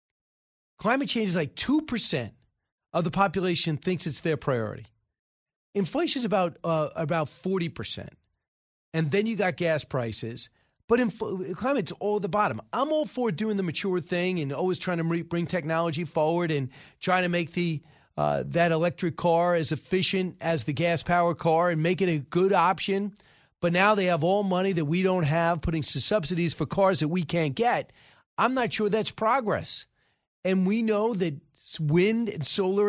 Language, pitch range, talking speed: English, 155-195 Hz, 175 wpm